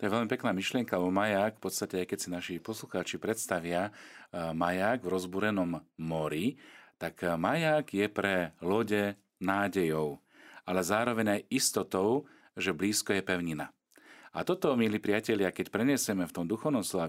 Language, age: Slovak, 40-59